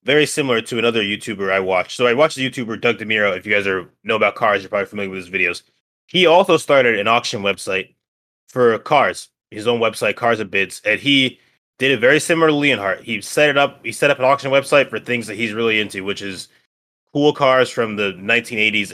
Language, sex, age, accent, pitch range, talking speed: English, male, 20-39, American, 110-140 Hz, 230 wpm